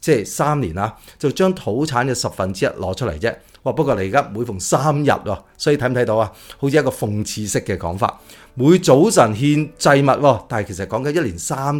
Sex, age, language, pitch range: male, 30-49, Chinese, 105-150 Hz